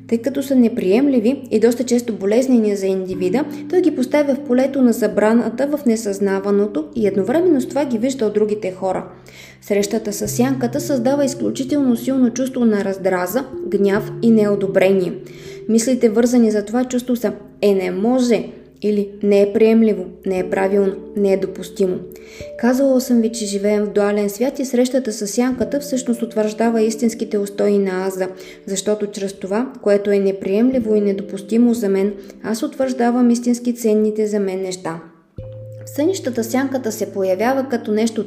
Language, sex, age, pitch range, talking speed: Bulgarian, female, 20-39, 195-245 Hz, 155 wpm